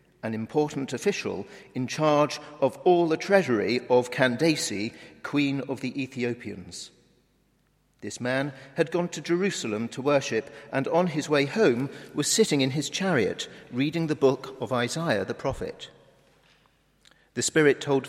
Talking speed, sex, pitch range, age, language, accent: 145 wpm, male, 120-160 Hz, 50-69, English, British